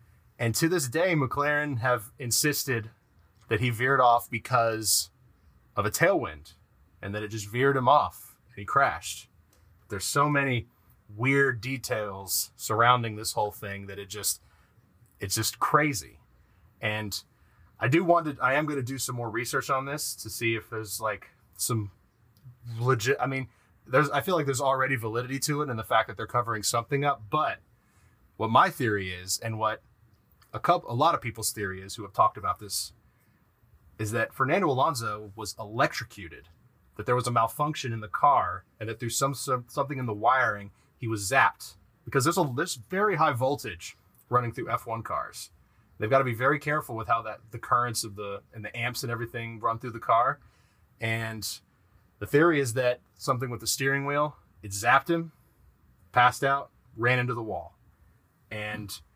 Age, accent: 30-49, American